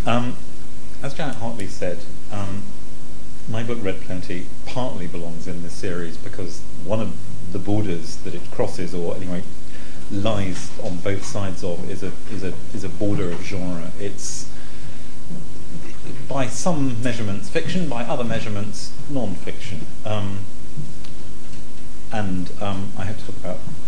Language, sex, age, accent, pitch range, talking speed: English, male, 40-59, British, 90-115 Hz, 140 wpm